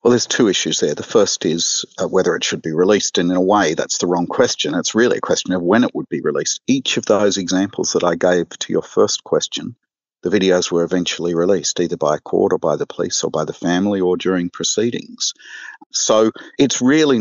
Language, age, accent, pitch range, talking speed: English, 50-69, Australian, 95-150 Hz, 225 wpm